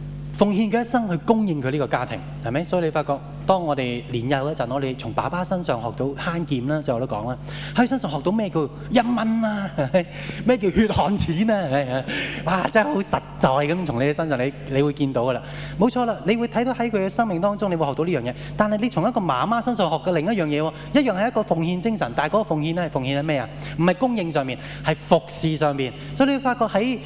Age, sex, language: 20-39, male, Japanese